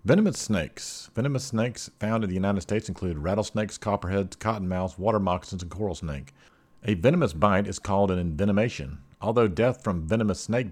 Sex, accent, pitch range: male, American, 90-105 Hz